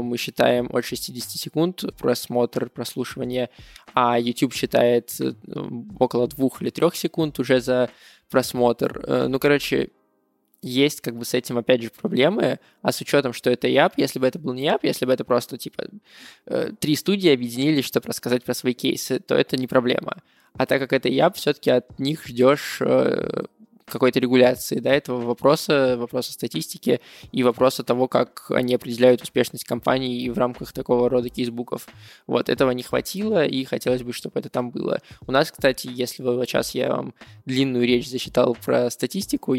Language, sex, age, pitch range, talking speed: Russian, male, 20-39, 120-135 Hz, 170 wpm